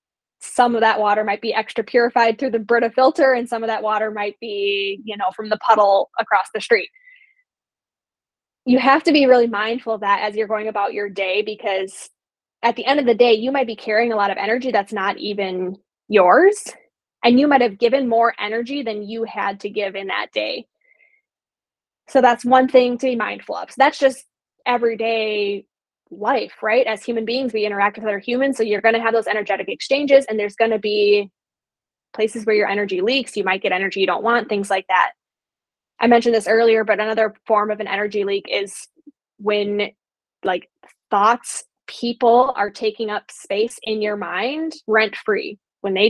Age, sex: 10-29, female